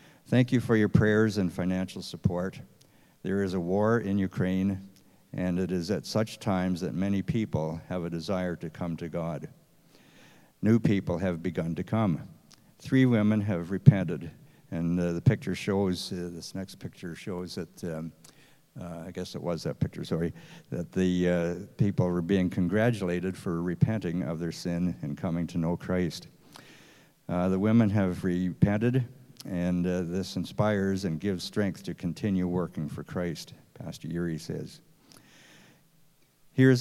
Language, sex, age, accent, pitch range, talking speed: English, male, 60-79, American, 90-105 Hz, 160 wpm